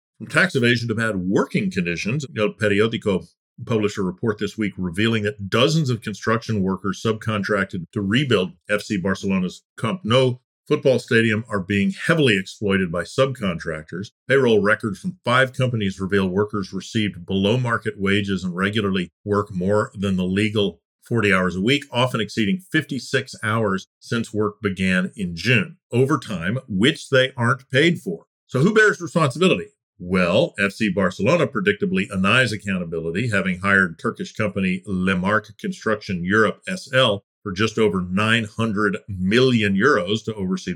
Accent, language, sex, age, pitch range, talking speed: American, English, male, 50-69, 95-120 Hz, 145 wpm